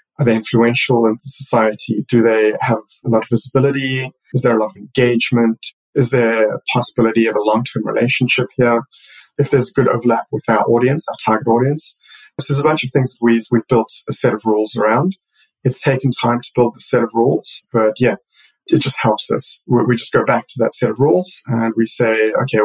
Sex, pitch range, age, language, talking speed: male, 110-130 Hz, 20-39, English, 210 wpm